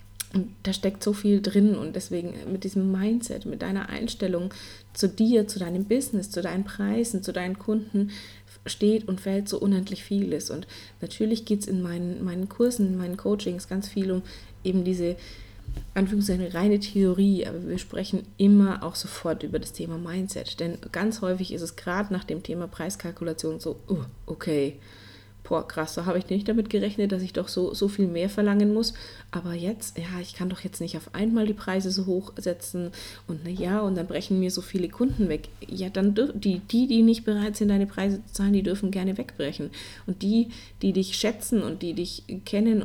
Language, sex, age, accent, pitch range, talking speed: German, female, 30-49, German, 180-205 Hz, 195 wpm